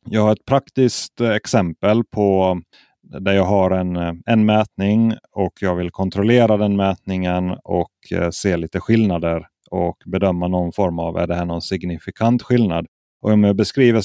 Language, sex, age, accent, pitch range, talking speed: Swedish, male, 30-49, native, 90-105 Hz, 160 wpm